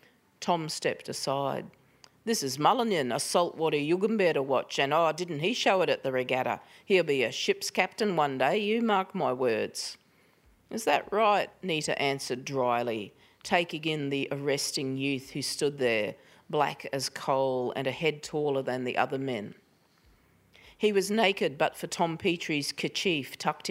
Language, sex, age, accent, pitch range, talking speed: English, female, 40-59, Australian, 135-170 Hz, 165 wpm